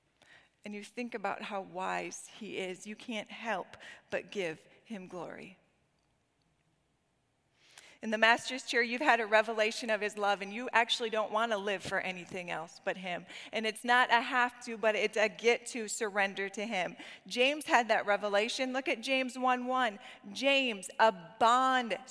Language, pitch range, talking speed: English, 215-270 Hz, 170 wpm